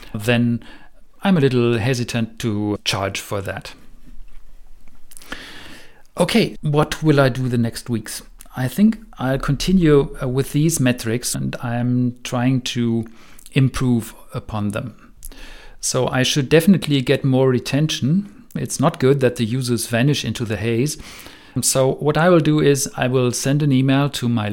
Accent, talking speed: German, 150 wpm